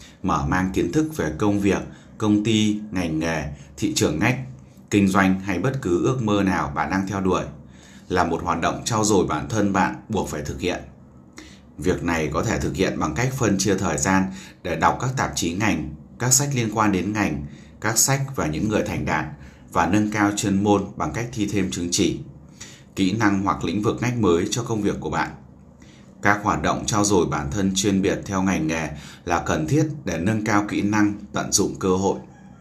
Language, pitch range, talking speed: Vietnamese, 80-105 Hz, 215 wpm